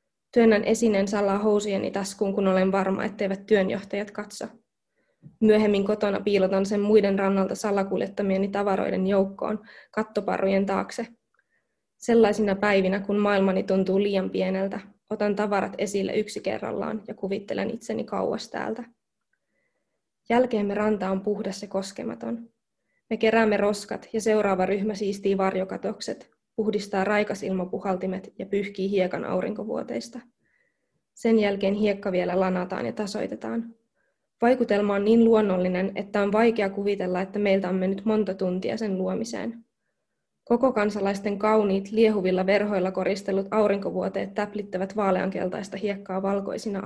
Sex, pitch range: female, 195-215 Hz